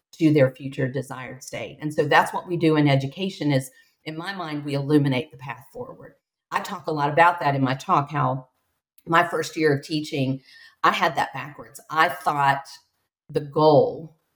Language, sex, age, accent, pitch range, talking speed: English, female, 50-69, American, 145-180 Hz, 190 wpm